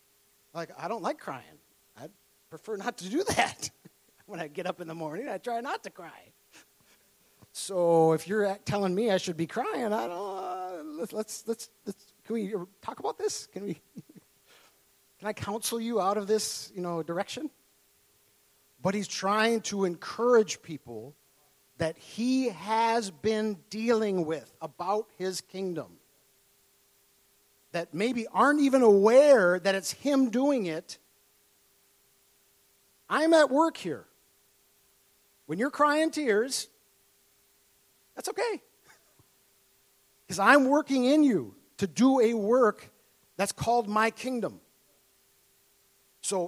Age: 50-69